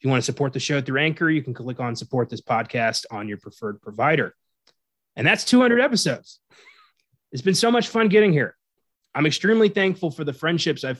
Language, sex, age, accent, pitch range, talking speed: English, male, 30-49, American, 125-160 Hz, 205 wpm